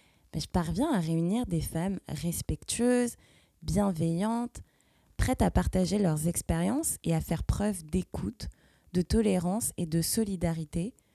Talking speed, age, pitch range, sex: 130 wpm, 20-39, 170-240 Hz, female